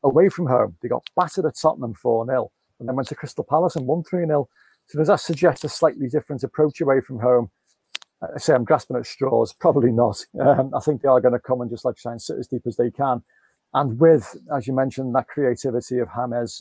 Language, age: English, 40-59